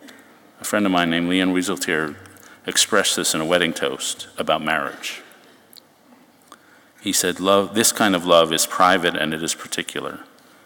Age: 50-69